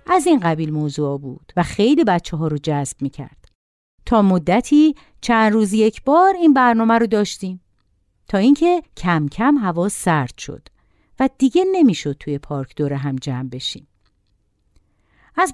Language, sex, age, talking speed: Persian, female, 50-69, 150 wpm